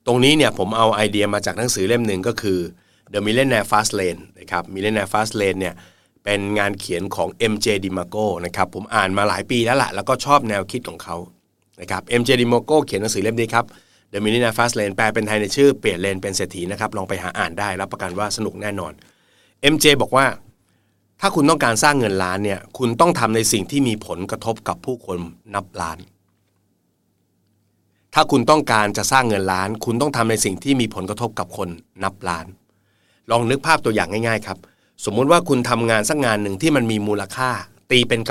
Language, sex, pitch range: Thai, male, 95-120 Hz